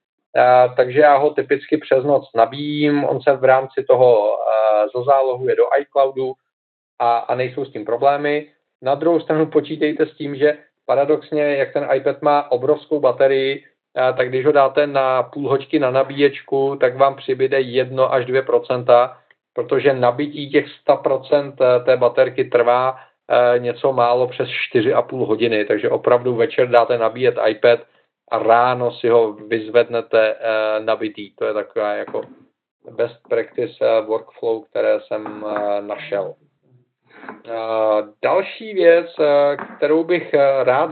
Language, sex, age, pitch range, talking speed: Czech, male, 40-59, 125-150 Hz, 135 wpm